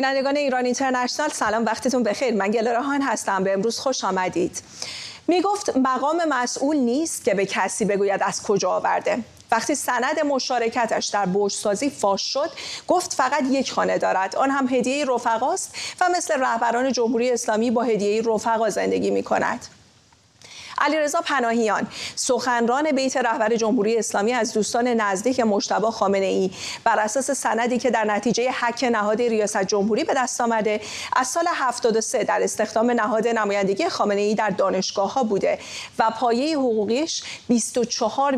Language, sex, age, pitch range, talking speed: English, female, 40-59, 205-255 Hz, 150 wpm